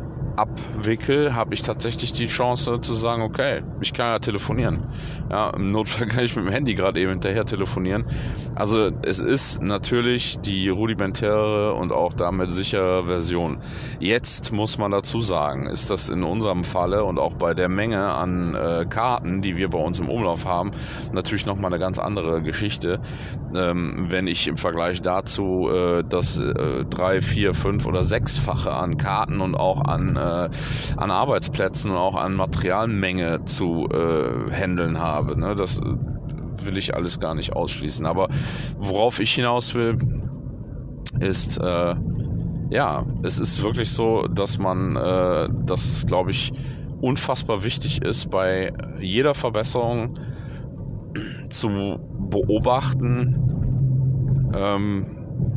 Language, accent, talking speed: German, German, 140 wpm